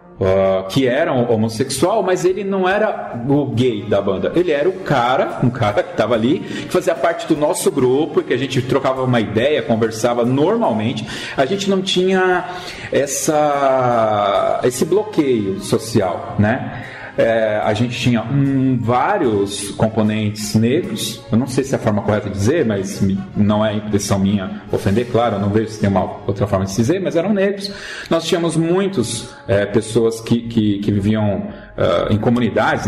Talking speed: 175 wpm